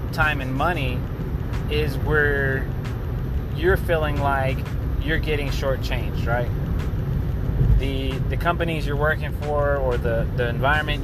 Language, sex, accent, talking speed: English, male, American, 120 wpm